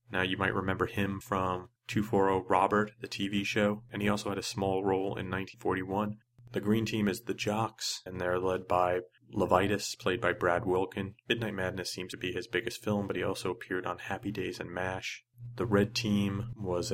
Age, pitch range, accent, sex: 30-49, 95-110 Hz, American, male